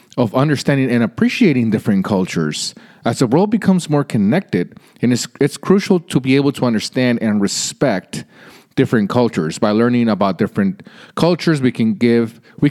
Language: English